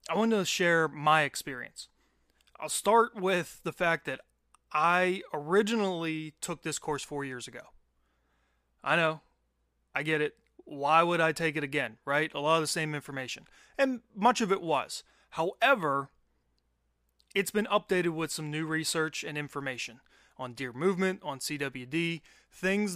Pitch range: 140-180 Hz